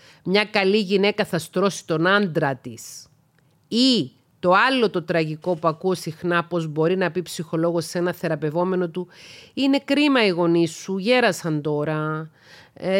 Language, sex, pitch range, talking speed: Greek, female, 165-215 Hz, 150 wpm